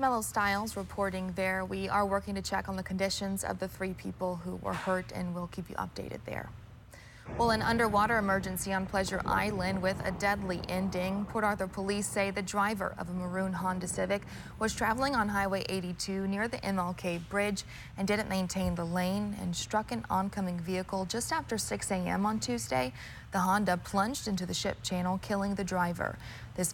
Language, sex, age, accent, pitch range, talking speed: English, female, 20-39, American, 180-205 Hz, 185 wpm